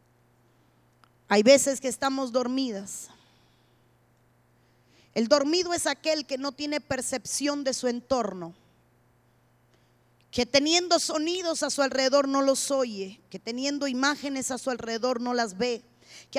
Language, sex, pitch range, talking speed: Spanish, female, 245-295 Hz, 130 wpm